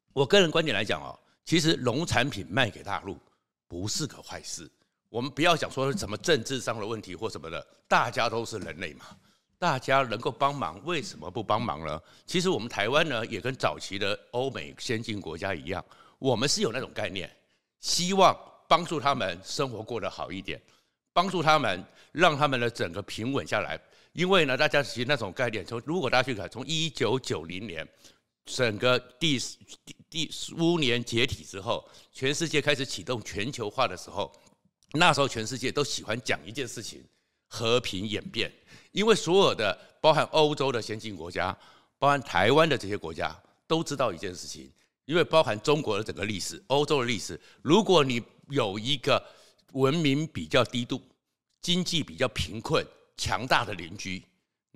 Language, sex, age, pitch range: Chinese, male, 60-79, 110-155 Hz